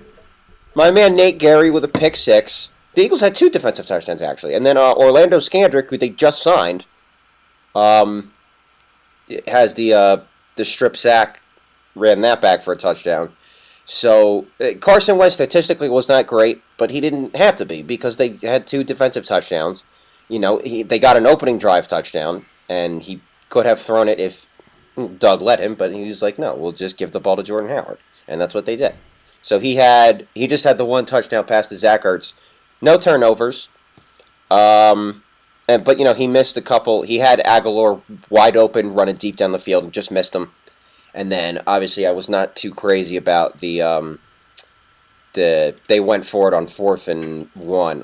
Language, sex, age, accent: English, male, 30-49, American